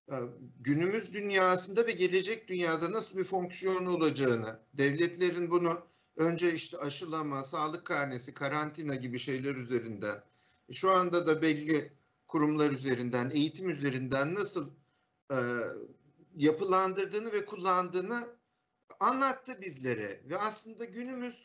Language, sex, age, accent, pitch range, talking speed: Turkish, male, 50-69, native, 140-195 Hz, 105 wpm